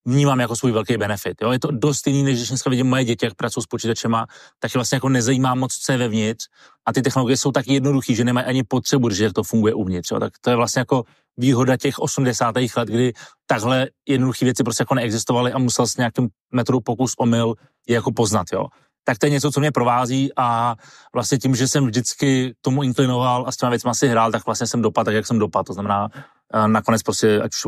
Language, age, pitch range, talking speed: Czech, 30-49, 110-130 Hz, 225 wpm